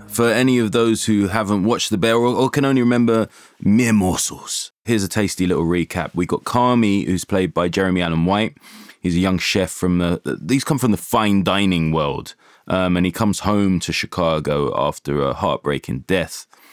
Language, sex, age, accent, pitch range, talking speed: English, male, 20-39, British, 90-110 Hz, 195 wpm